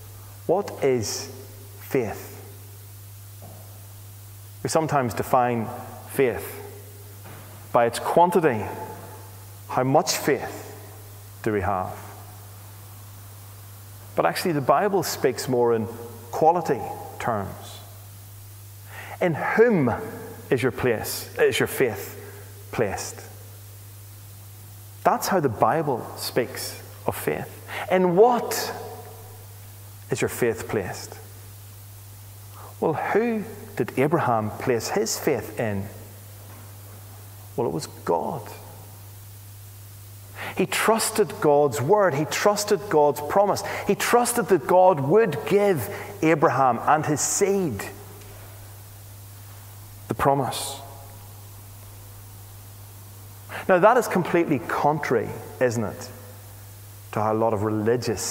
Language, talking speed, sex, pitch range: English, 95 wpm, male, 100-120 Hz